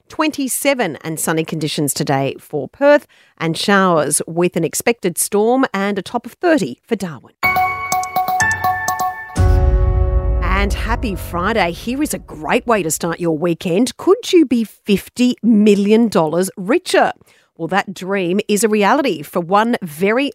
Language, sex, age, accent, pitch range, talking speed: English, female, 40-59, Australian, 175-245 Hz, 140 wpm